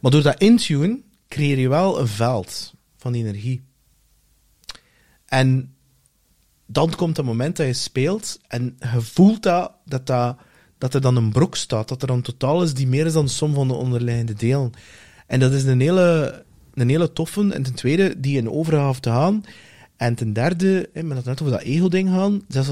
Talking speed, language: 195 wpm, English